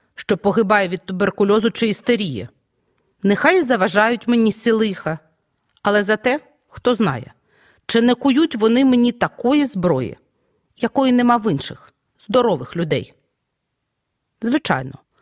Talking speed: 115 wpm